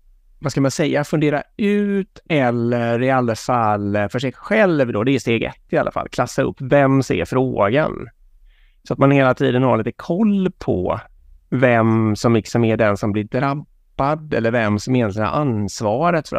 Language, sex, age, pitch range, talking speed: Swedish, male, 30-49, 105-145 Hz, 185 wpm